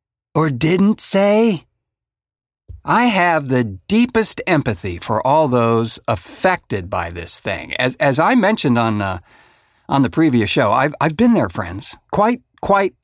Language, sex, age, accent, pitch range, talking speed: English, male, 50-69, American, 105-150 Hz, 145 wpm